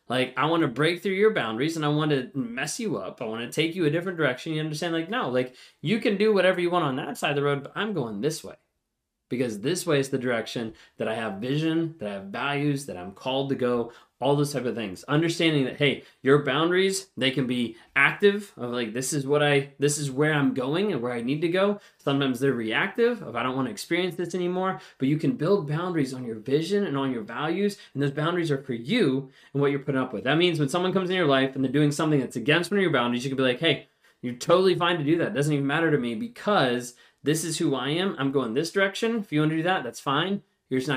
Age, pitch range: 20-39, 130-175 Hz